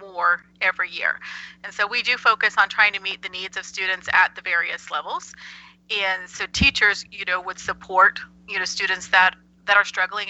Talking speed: 200 wpm